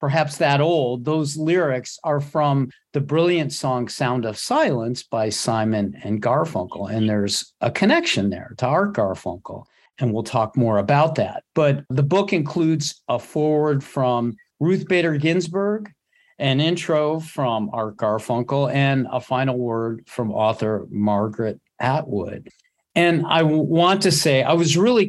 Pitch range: 115-160 Hz